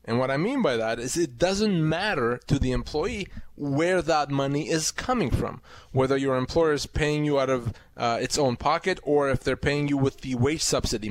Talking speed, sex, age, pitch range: 215 wpm, male, 30-49, 130-170 Hz